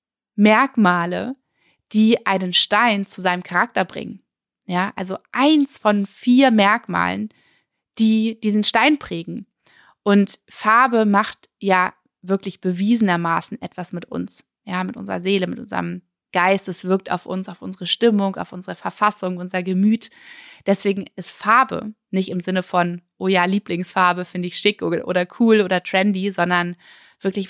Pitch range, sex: 185-235 Hz, female